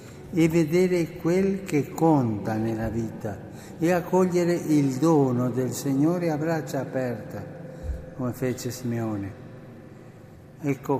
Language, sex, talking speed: Italian, male, 110 wpm